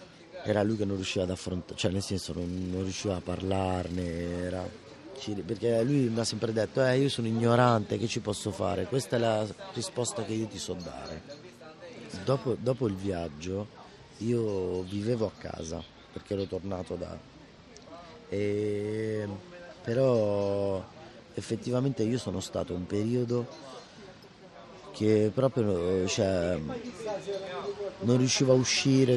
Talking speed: 135 wpm